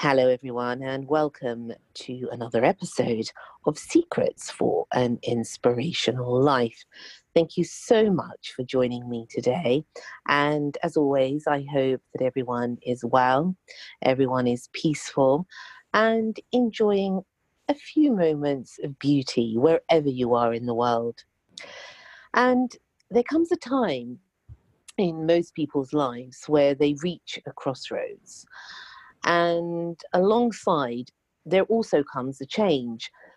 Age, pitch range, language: 40-59, 130-185 Hz, English